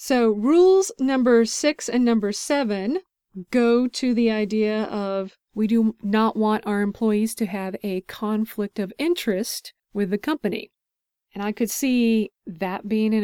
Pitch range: 195-245 Hz